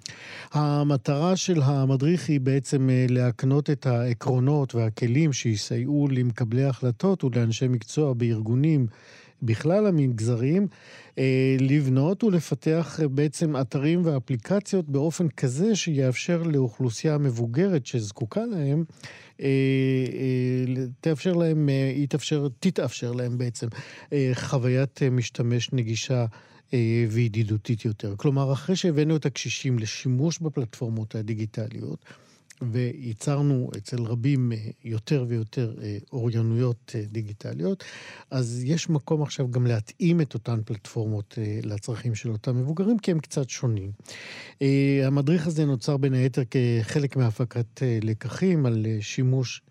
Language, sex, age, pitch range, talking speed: Hebrew, male, 50-69, 120-150 Hz, 95 wpm